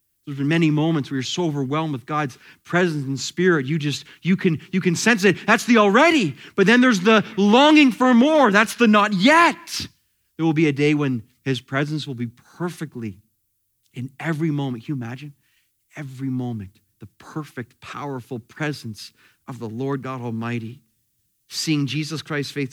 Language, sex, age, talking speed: English, male, 30-49, 175 wpm